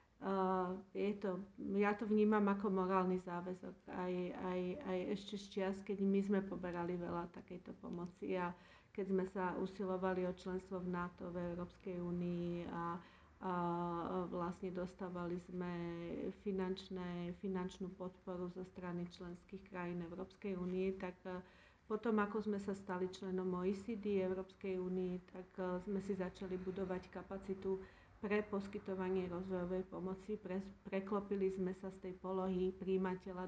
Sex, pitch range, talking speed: female, 185-200 Hz, 135 wpm